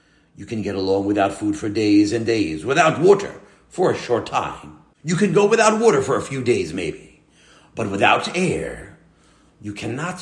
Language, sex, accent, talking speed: English, male, American, 180 wpm